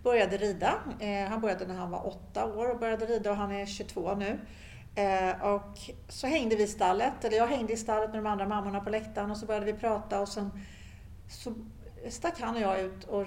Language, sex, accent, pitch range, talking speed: Swedish, female, native, 180-220 Hz, 215 wpm